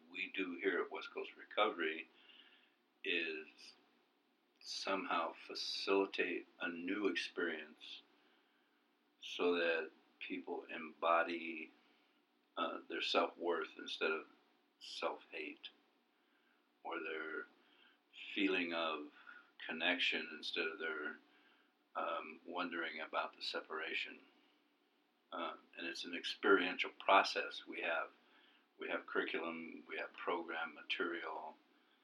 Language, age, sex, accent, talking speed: English, 60-79, male, American, 95 wpm